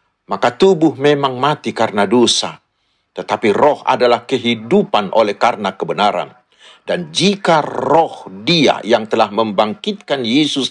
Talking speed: 120 wpm